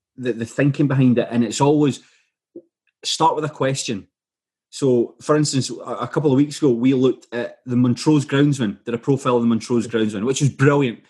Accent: British